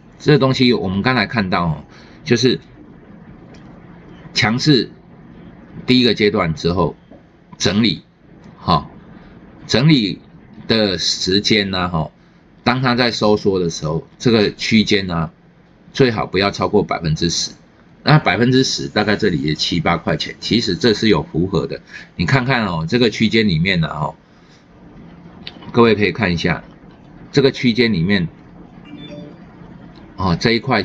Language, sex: Chinese, male